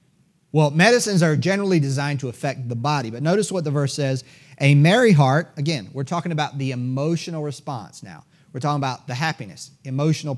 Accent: American